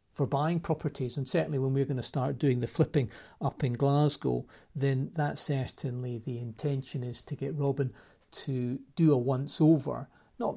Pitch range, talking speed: 130-145 Hz, 170 wpm